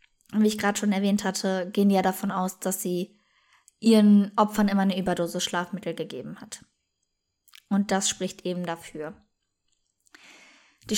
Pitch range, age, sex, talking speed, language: 180-220 Hz, 20-39, female, 140 wpm, German